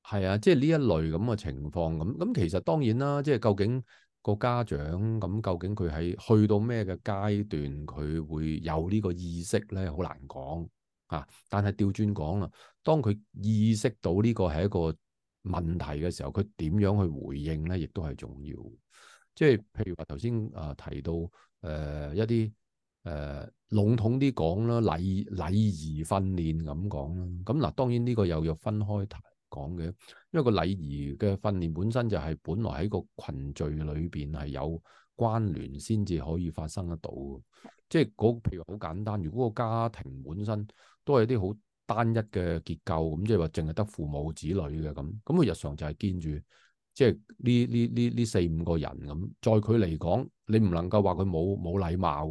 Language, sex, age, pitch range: Chinese, male, 30-49, 80-110 Hz